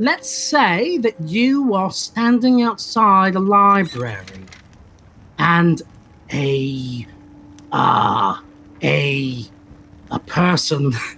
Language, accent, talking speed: English, British, 80 wpm